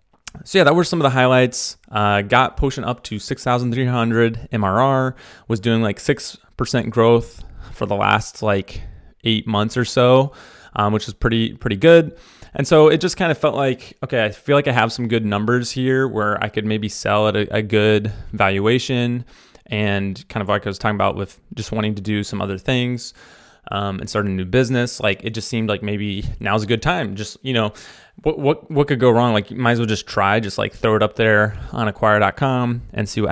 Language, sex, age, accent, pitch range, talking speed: English, male, 20-39, American, 105-130 Hz, 220 wpm